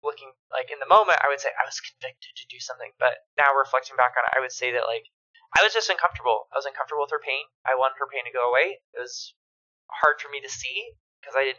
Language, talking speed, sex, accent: English, 270 wpm, male, American